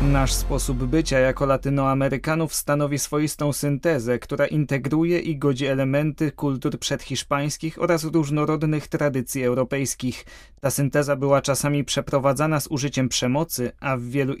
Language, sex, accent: Polish, male, native